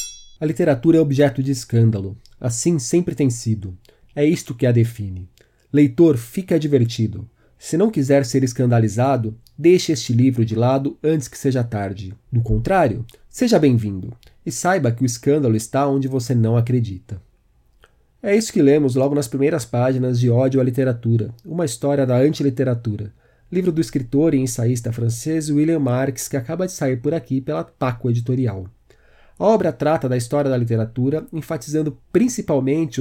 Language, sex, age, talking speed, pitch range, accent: Portuguese, male, 40-59, 160 wpm, 120-155 Hz, Brazilian